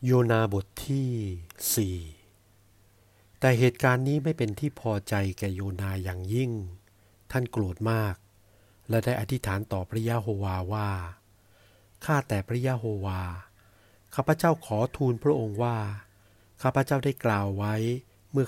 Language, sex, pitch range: Thai, male, 100-125 Hz